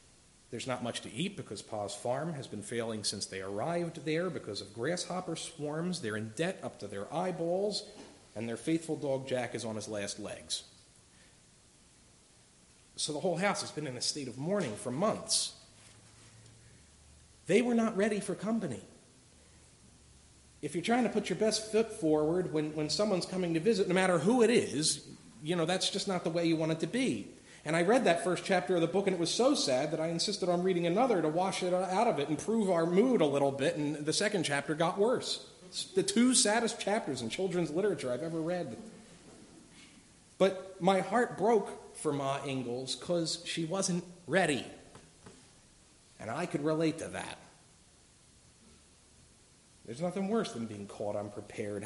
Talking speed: 185 wpm